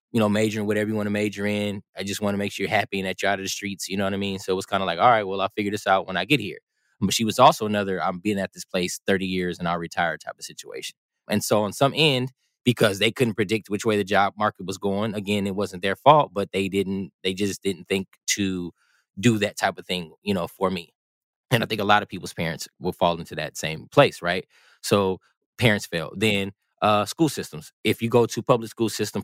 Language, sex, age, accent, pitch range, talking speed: English, male, 20-39, American, 95-110 Hz, 270 wpm